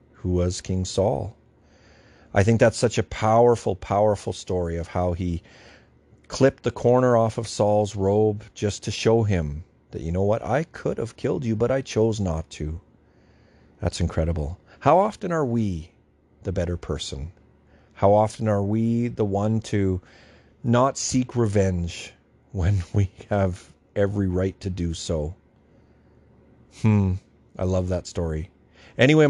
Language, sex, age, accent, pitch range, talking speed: English, male, 40-59, American, 90-110 Hz, 150 wpm